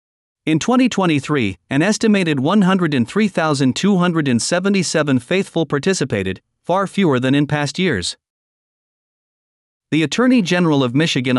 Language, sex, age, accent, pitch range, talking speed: English, male, 50-69, American, 130-170 Hz, 95 wpm